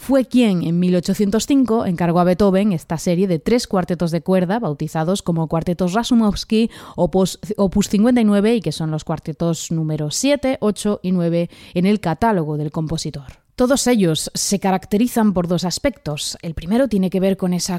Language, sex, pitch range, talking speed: Spanish, female, 175-225 Hz, 165 wpm